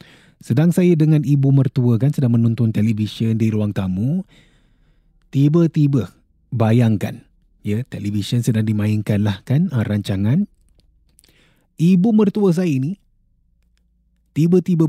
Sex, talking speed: male, 110 wpm